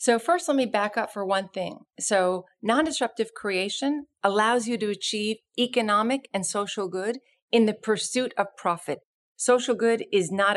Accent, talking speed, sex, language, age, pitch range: American, 165 wpm, female, English, 40-59, 185-235 Hz